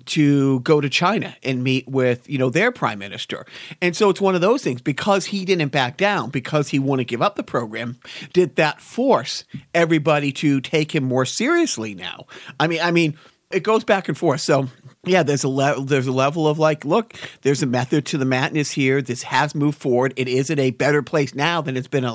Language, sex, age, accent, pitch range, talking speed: English, male, 40-59, American, 135-175 Hz, 230 wpm